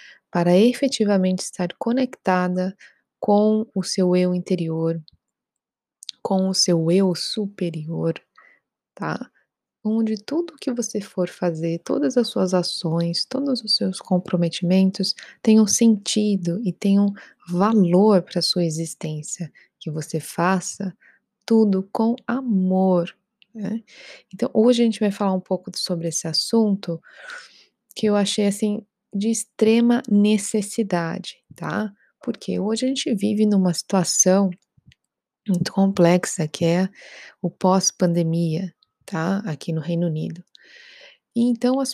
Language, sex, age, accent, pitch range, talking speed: Portuguese, female, 20-39, Brazilian, 175-215 Hz, 125 wpm